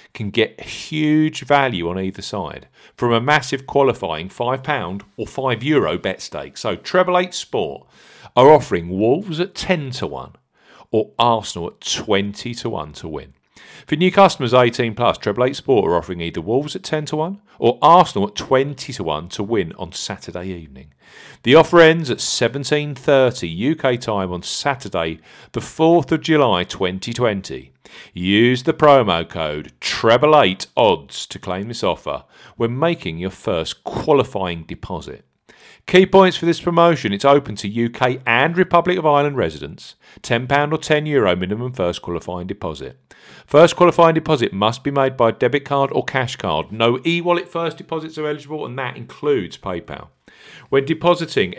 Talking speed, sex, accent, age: 165 wpm, male, British, 40-59